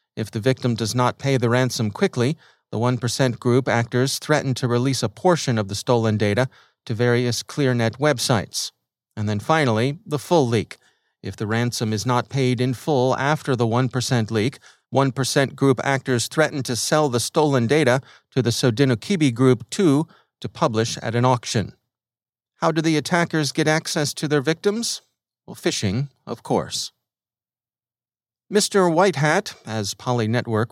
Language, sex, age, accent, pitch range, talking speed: English, male, 40-59, American, 115-140 Hz, 160 wpm